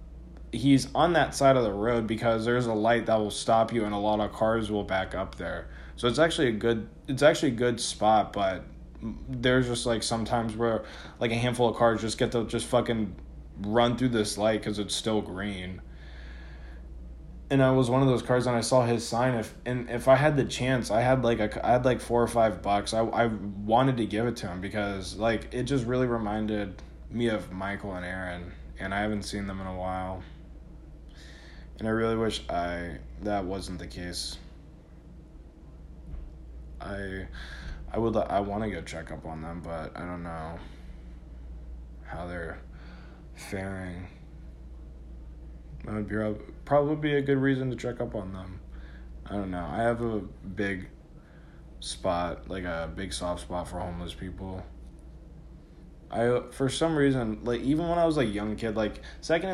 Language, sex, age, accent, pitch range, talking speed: English, male, 20-39, American, 80-115 Hz, 185 wpm